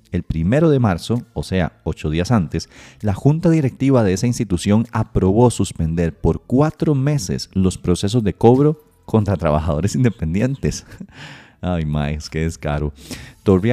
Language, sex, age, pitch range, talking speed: Spanish, male, 30-49, 85-115 Hz, 140 wpm